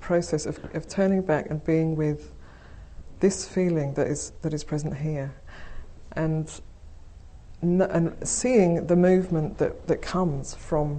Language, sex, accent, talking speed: English, female, British, 140 wpm